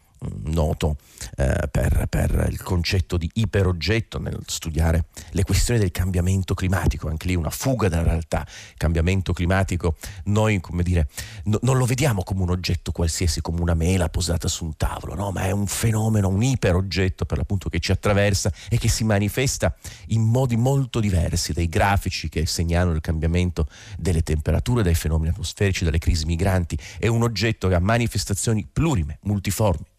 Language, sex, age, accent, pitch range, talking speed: Italian, male, 40-59, native, 85-105 Hz, 170 wpm